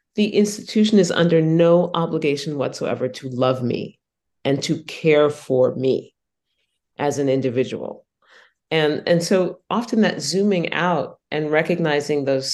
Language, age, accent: English, 40-59, American